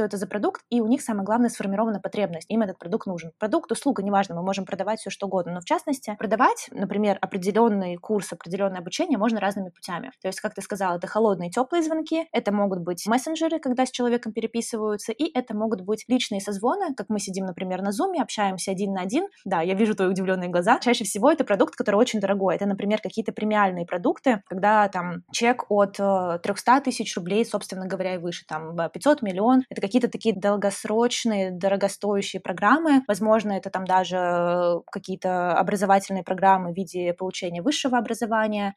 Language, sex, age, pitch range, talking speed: Russian, female, 20-39, 190-240 Hz, 180 wpm